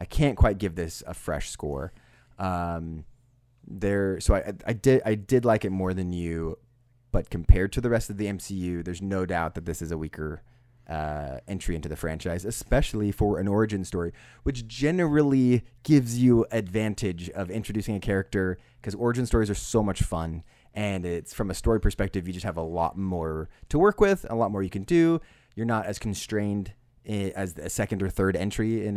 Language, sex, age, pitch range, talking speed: English, male, 20-39, 90-115 Hz, 195 wpm